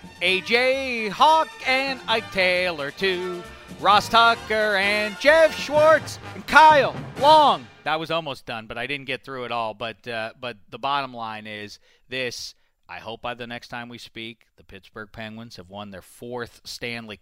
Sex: male